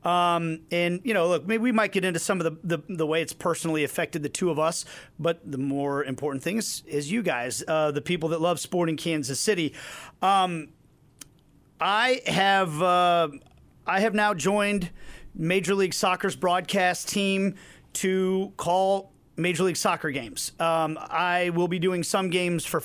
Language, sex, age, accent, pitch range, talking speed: English, male, 40-59, American, 160-195 Hz, 175 wpm